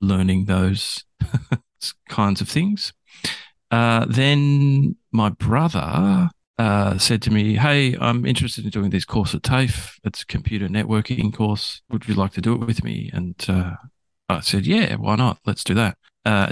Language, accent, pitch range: English, Australian, 95-115 Hz